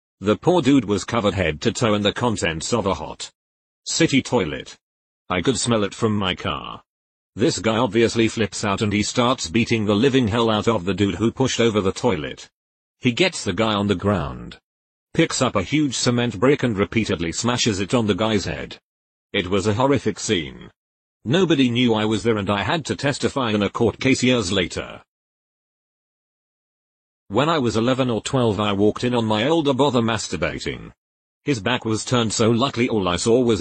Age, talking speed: 40-59, 195 wpm